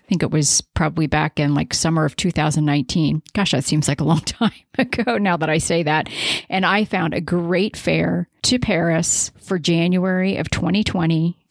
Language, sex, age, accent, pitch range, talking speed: English, female, 40-59, American, 155-215 Hz, 190 wpm